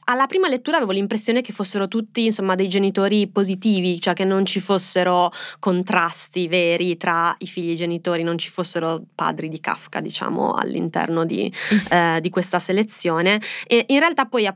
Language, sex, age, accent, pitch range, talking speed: Italian, female, 20-39, native, 175-210 Hz, 175 wpm